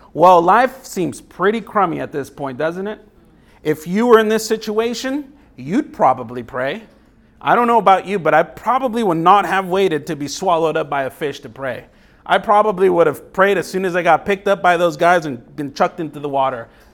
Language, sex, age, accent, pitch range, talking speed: English, male, 40-59, American, 145-195 Hz, 215 wpm